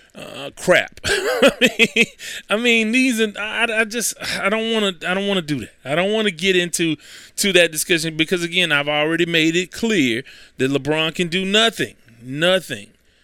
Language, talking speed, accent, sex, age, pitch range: English, 190 wpm, American, male, 30-49, 150-195 Hz